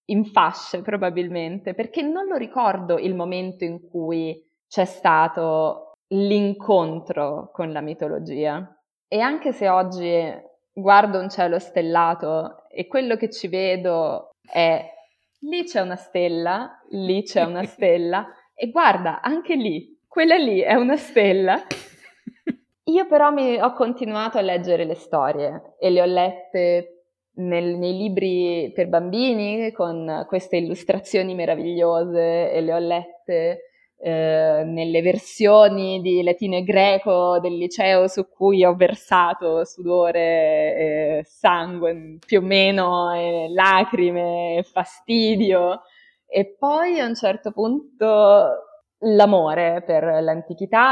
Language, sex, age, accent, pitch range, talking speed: Italian, female, 20-39, native, 170-215 Hz, 125 wpm